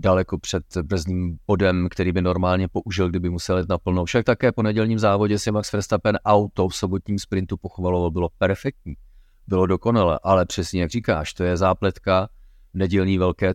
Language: Czech